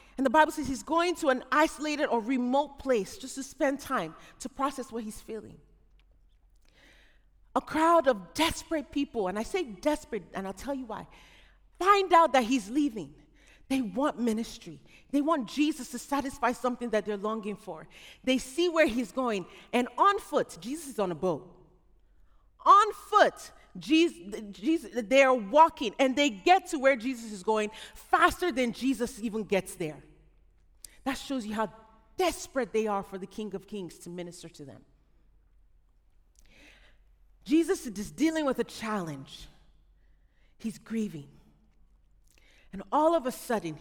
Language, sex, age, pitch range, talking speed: English, female, 30-49, 175-280 Hz, 155 wpm